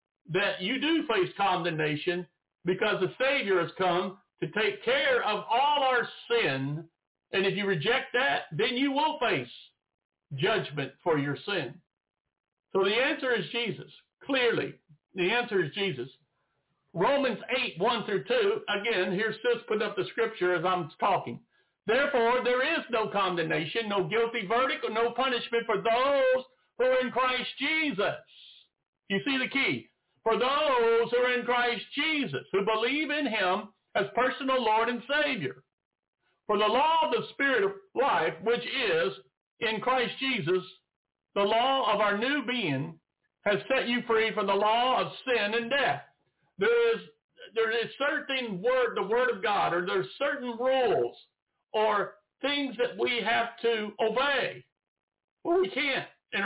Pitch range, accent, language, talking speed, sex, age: 195-275 Hz, American, English, 160 wpm, male, 60-79